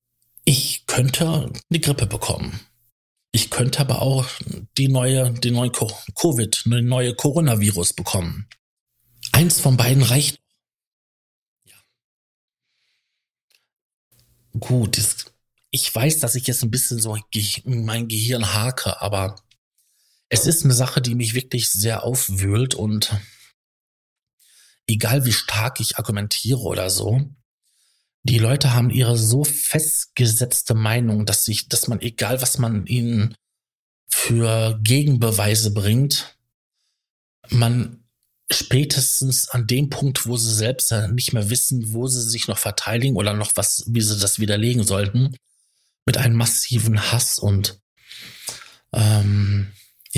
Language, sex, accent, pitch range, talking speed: German, male, German, 110-130 Hz, 120 wpm